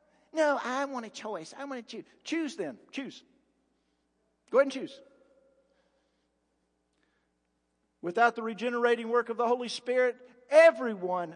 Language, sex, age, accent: English, male, 50-69, American